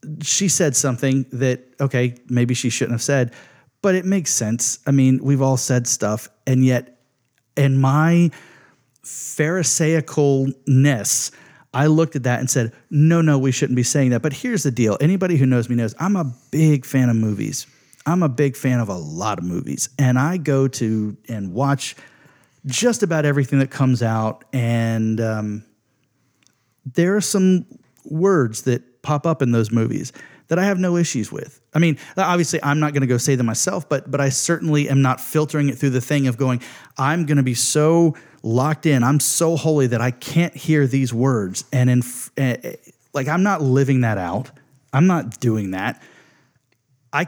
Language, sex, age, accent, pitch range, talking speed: English, male, 40-59, American, 120-150 Hz, 185 wpm